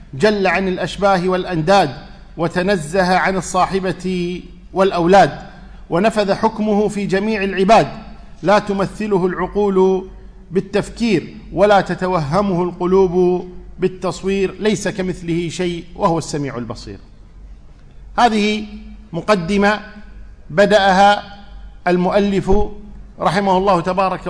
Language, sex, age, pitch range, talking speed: Arabic, male, 50-69, 180-210 Hz, 85 wpm